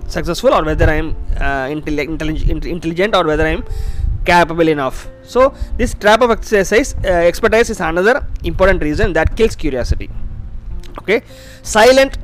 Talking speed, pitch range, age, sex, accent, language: 150 wpm, 135-230 Hz, 20-39, male, native, Tamil